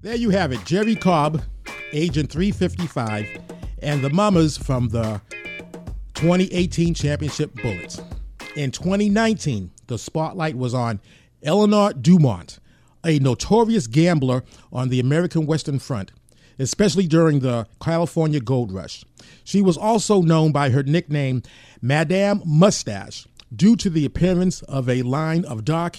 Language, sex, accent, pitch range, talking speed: English, male, American, 125-170 Hz, 130 wpm